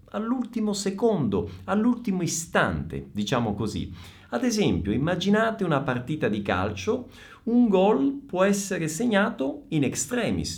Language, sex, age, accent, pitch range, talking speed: Italian, male, 50-69, native, 130-205 Hz, 115 wpm